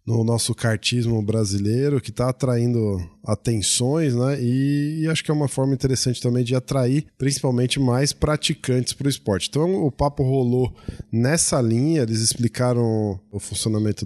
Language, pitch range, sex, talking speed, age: Portuguese, 110-130 Hz, male, 150 wpm, 20-39